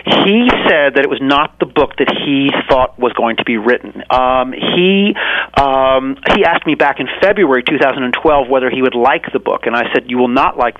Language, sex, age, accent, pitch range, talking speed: English, male, 40-59, American, 125-145 Hz, 215 wpm